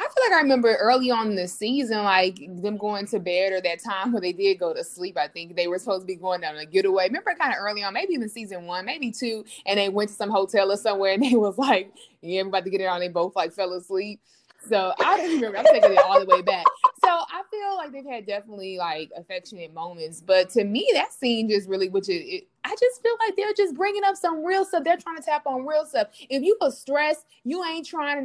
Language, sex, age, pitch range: English, female, 20-39, 205-325 Hz